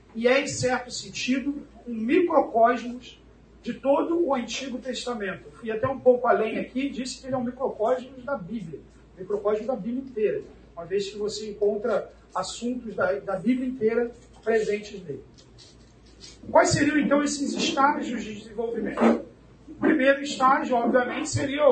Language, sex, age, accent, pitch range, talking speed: Portuguese, male, 40-59, Brazilian, 220-270 Hz, 150 wpm